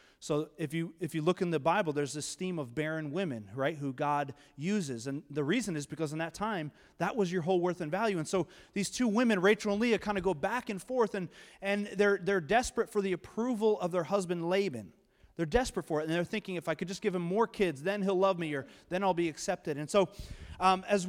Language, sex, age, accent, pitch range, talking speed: English, male, 30-49, American, 155-190 Hz, 250 wpm